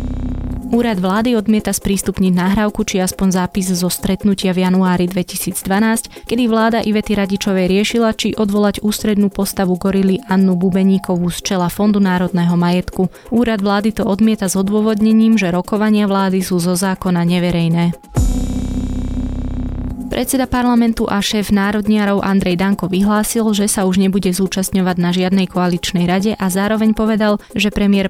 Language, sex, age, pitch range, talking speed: Slovak, female, 20-39, 180-205 Hz, 140 wpm